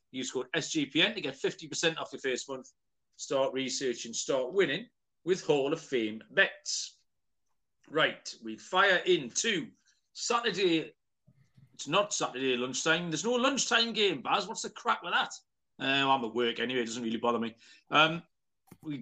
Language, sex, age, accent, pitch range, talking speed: English, male, 40-59, British, 135-170 Hz, 165 wpm